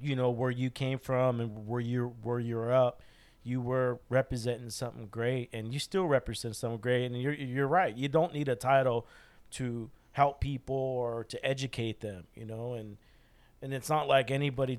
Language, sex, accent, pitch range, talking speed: English, male, American, 115-130 Hz, 190 wpm